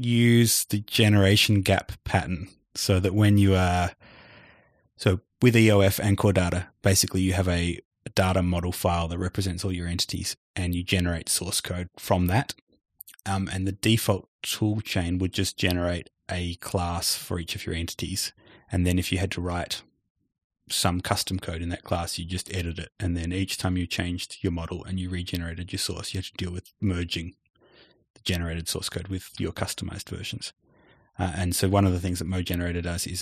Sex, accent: male, Australian